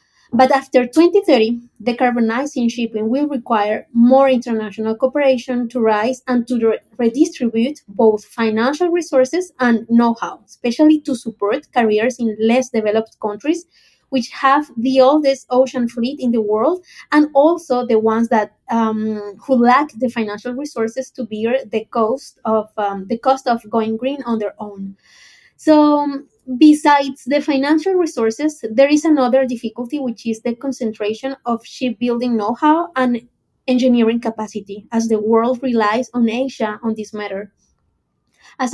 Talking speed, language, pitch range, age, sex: 145 wpm, English, 225-275 Hz, 20-39, female